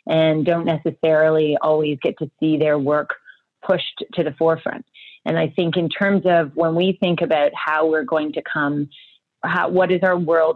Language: English